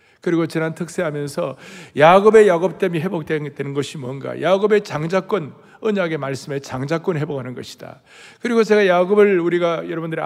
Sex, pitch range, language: male, 140-195 Hz, Korean